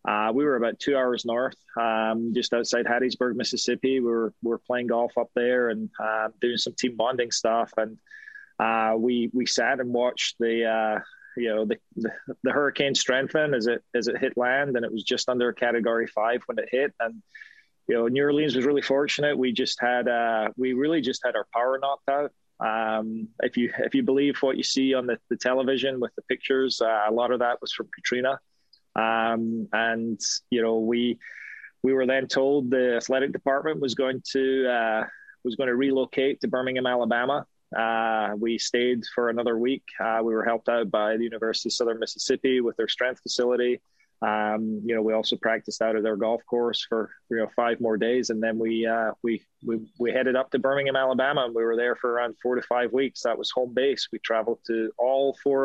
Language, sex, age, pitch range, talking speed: English, male, 20-39, 115-130 Hz, 210 wpm